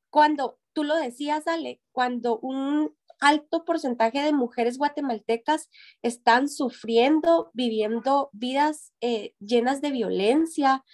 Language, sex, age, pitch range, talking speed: Spanish, female, 20-39, 225-275 Hz, 110 wpm